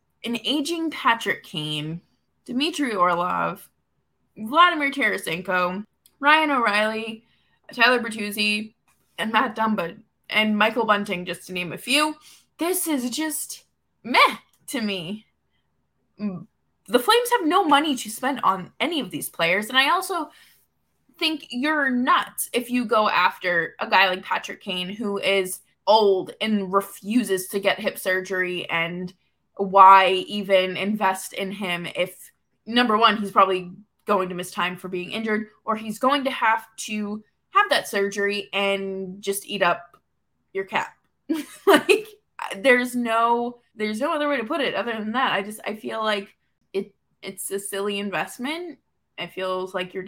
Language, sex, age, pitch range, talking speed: English, female, 20-39, 185-250 Hz, 150 wpm